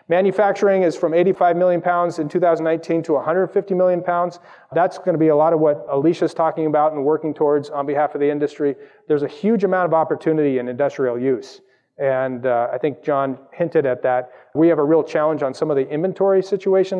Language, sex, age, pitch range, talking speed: English, male, 30-49, 140-175 Hz, 210 wpm